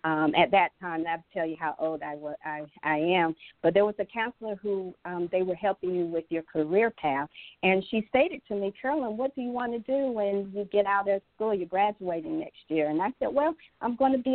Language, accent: English, American